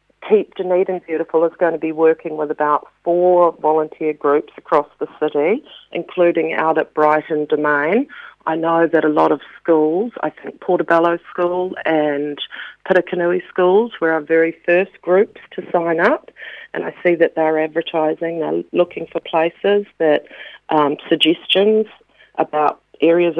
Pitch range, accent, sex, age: 155-180 Hz, Australian, female, 40-59